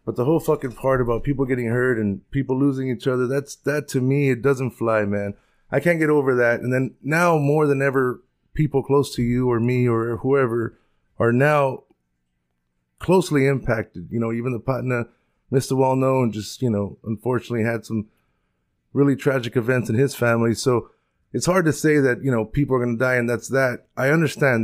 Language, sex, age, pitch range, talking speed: English, male, 30-49, 120-140 Hz, 200 wpm